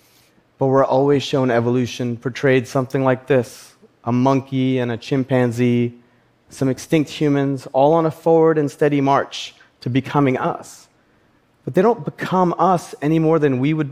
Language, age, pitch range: Japanese, 30-49, 115-140 Hz